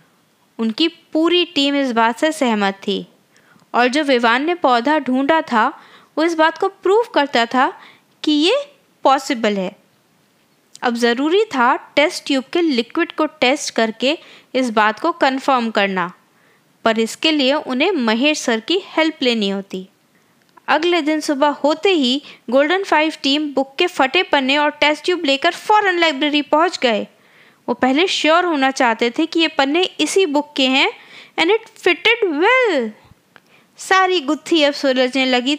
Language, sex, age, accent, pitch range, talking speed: Hindi, female, 20-39, native, 245-345 Hz, 155 wpm